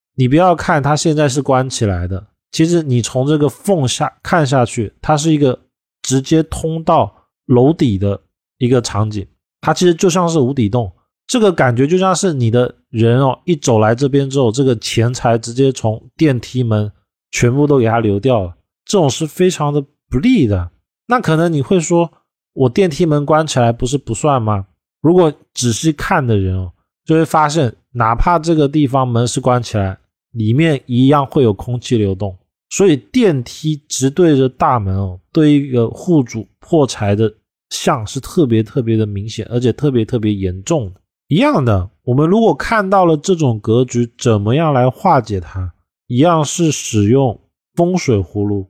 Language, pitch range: Chinese, 110-155 Hz